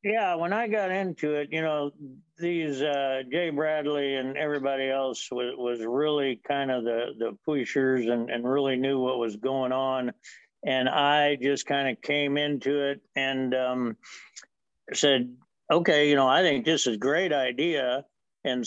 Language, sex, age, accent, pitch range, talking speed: English, male, 60-79, American, 125-145 Hz, 170 wpm